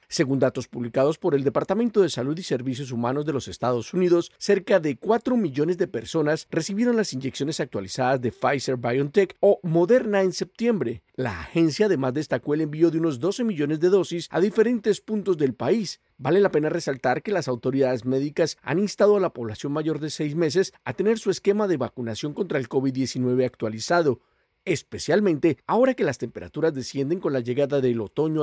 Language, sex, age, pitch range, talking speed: Spanish, male, 40-59, 130-180 Hz, 180 wpm